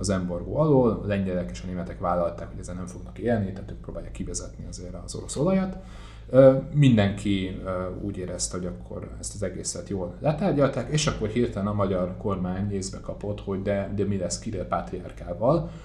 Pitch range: 90-105 Hz